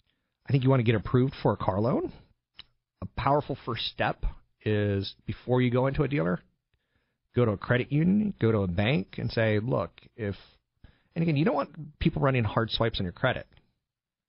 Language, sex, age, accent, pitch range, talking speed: English, male, 40-59, American, 100-130 Hz, 195 wpm